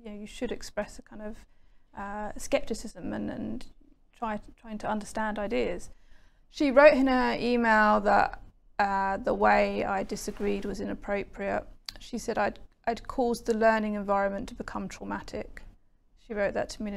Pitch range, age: 200-235 Hz, 30-49